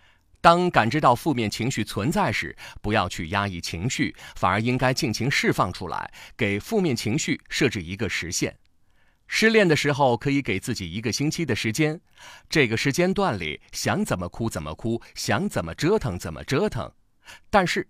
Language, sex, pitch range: Chinese, male, 95-140 Hz